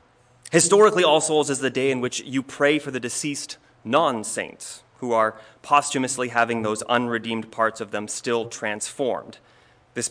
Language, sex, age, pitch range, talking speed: English, male, 30-49, 115-150 Hz, 155 wpm